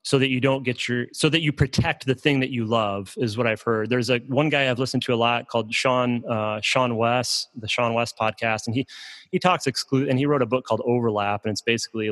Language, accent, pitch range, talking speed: English, American, 110-125 Hz, 260 wpm